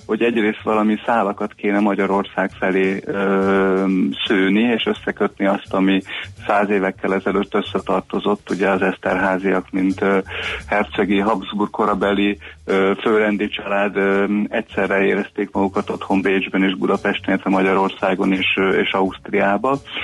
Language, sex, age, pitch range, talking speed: Hungarian, male, 30-49, 95-105 Hz, 120 wpm